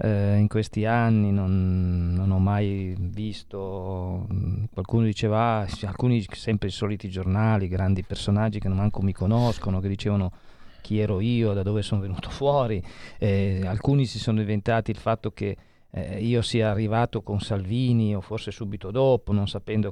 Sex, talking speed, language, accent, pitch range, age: male, 155 wpm, Italian, native, 100-120 Hz, 40-59